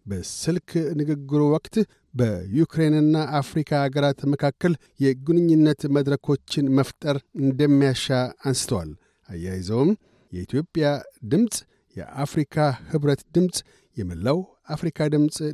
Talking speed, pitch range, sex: 80 wpm, 135-155 Hz, male